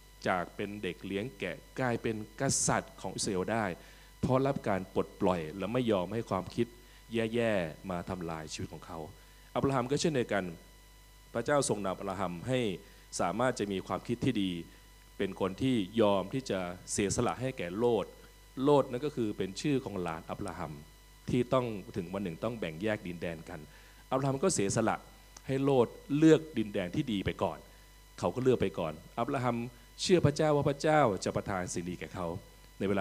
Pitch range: 95-130 Hz